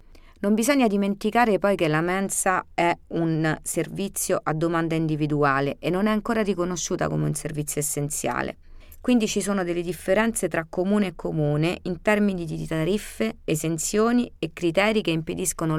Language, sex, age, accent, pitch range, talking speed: Italian, female, 30-49, native, 155-185 Hz, 150 wpm